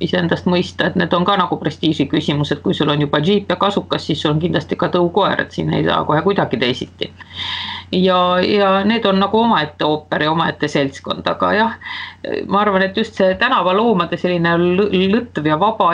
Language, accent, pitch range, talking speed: English, Finnish, 170-225 Hz, 190 wpm